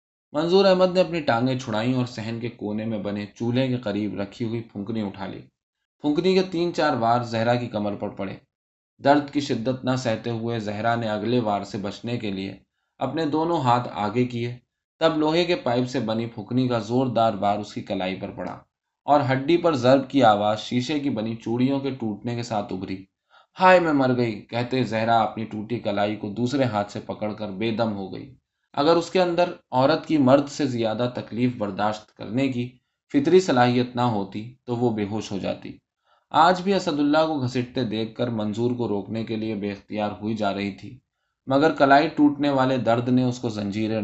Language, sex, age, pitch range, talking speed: Urdu, male, 20-39, 105-130 Hz, 200 wpm